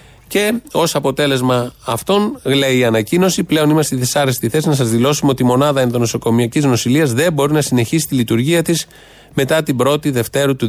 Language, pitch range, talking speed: Greek, 130-165 Hz, 175 wpm